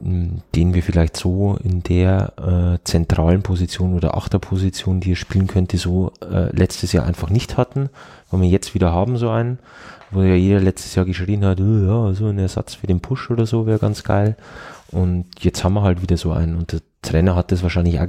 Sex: male